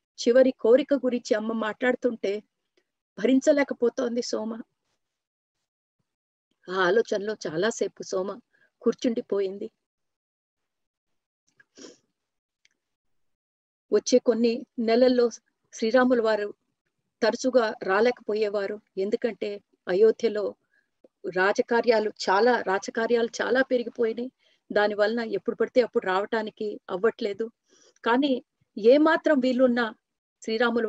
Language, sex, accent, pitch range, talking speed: Telugu, female, native, 205-245 Hz, 70 wpm